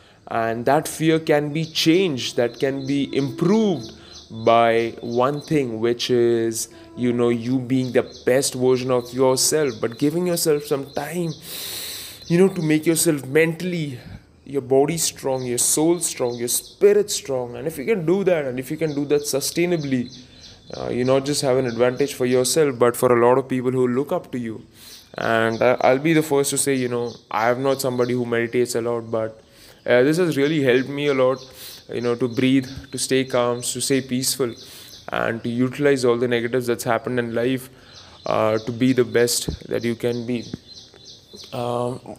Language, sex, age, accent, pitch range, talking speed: English, male, 20-39, Indian, 120-145 Hz, 190 wpm